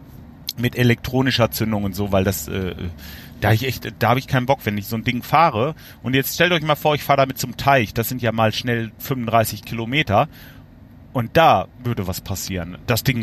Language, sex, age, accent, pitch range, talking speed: German, male, 40-59, German, 115-145 Hz, 205 wpm